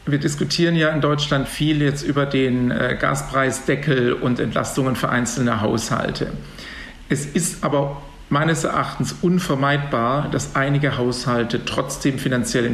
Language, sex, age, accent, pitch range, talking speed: German, male, 50-69, German, 125-145 Hz, 125 wpm